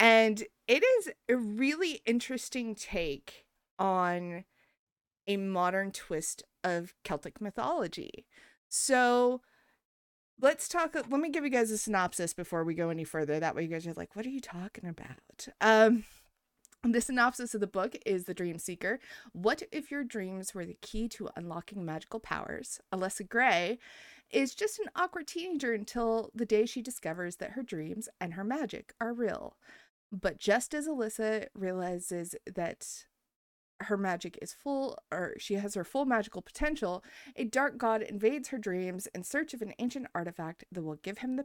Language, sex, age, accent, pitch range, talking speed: English, female, 30-49, American, 180-245 Hz, 165 wpm